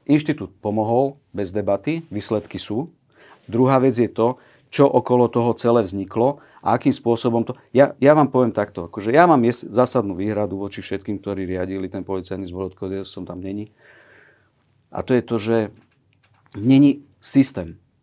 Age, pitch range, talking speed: 50-69, 95-125 Hz, 165 wpm